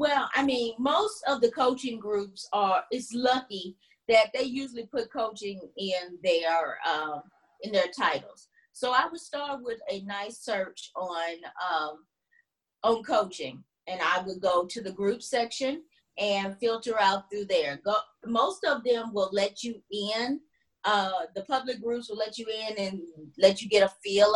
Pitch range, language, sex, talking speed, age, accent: 185-240 Hz, English, female, 170 wpm, 30-49, American